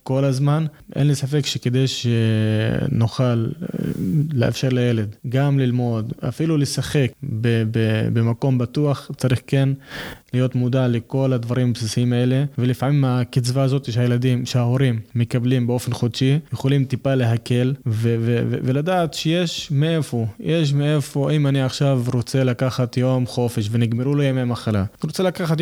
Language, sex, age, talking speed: Hebrew, male, 20-39, 140 wpm